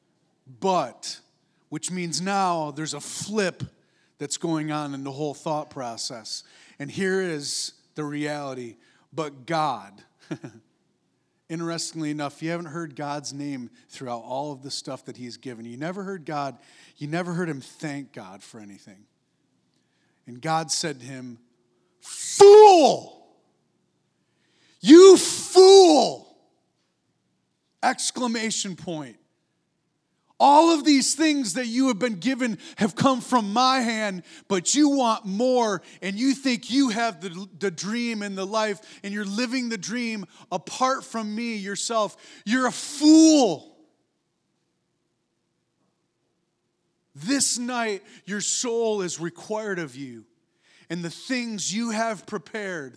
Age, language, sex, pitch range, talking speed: 40-59, English, male, 150-230 Hz, 130 wpm